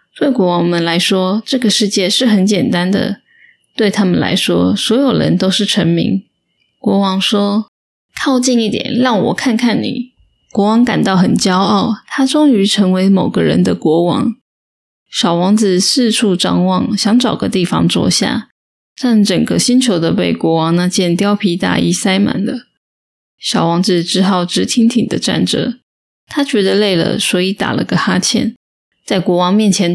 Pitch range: 185-240 Hz